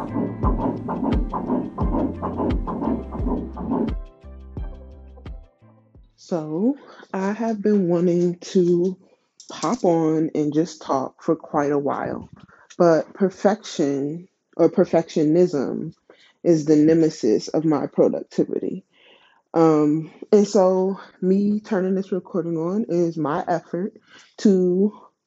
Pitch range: 155-205 Hz